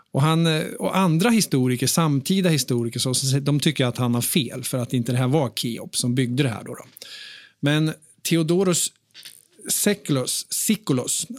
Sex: male